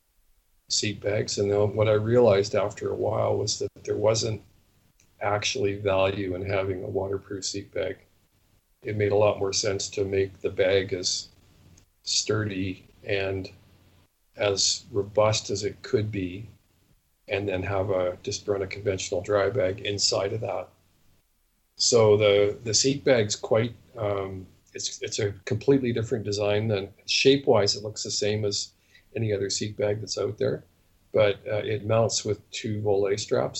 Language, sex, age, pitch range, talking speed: English, male, 50-69, 95-105 Hz, 160 wpm